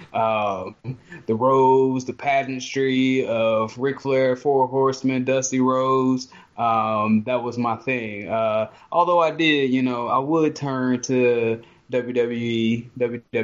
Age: 20-39